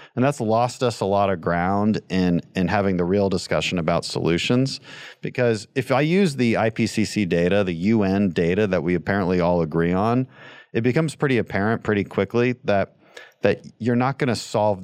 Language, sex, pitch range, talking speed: English, male, 85-115 Hz, 180 wpm